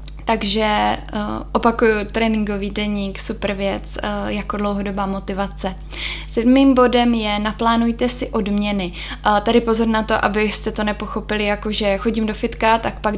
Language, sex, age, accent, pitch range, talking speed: Czech, female, 10-29, native, 205-230 Hz, 145 wpm